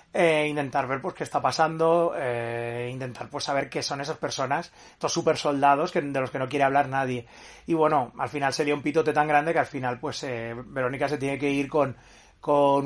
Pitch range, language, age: 135-160 Hz, Spanish, 30-49